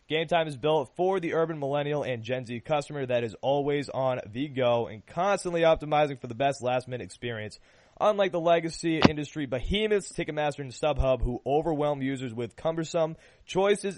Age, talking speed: 20-39, 170 wpm